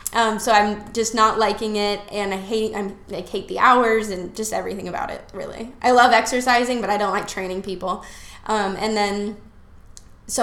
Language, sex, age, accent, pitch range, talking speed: English, female, 10-29, American, 205-235 Hz, 195 wpm